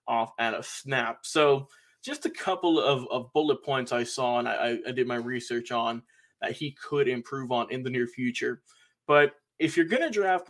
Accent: American